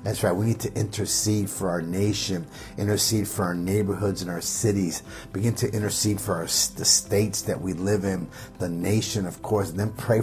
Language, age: English, 50-69